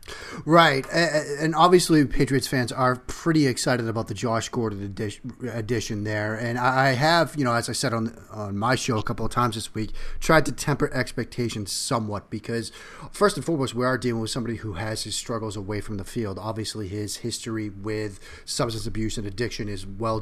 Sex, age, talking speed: male, 30-49, 190 wpm